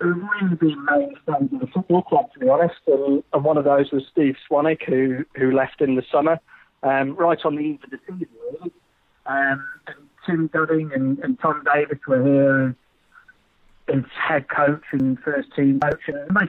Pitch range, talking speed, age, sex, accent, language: 140-175 Hz, 195 wpm, 40-59, male, British, English